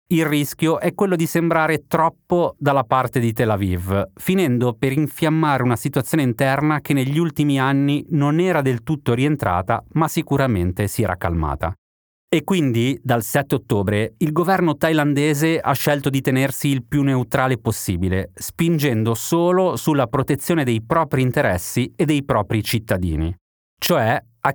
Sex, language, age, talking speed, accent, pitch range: male, Italian, 30-49, 150 wpm, native, 110-150 Hz